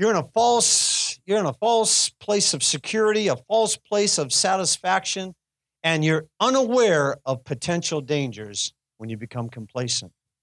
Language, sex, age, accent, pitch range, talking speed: English, male, 50-69, American, 140-215 Hz, 150 wpm